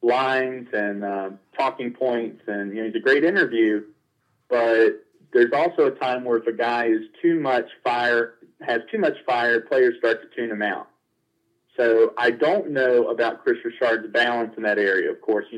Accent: American